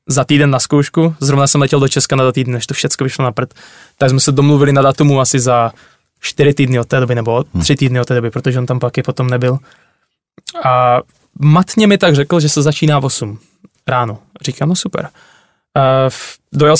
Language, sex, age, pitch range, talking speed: Czech, male, 20-39, 125-145 Hz, 205 wpm